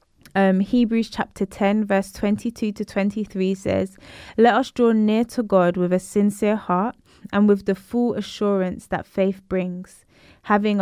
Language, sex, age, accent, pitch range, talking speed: English, female, 20-39, British, 185-215 Hz, 155 wpm